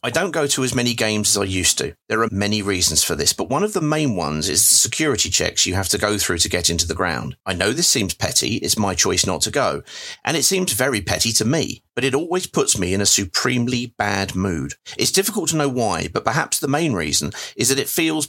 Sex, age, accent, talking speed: male, 40-59, British, 260 wpm